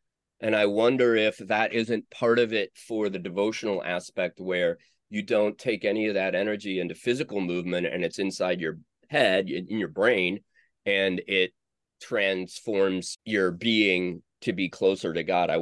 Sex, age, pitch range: male, 30-49, 95-145 Hz